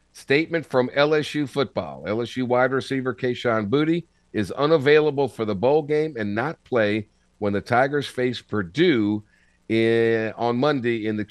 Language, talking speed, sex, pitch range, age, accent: English, 145 wpm, male, 100-140 Hz, 50-69, American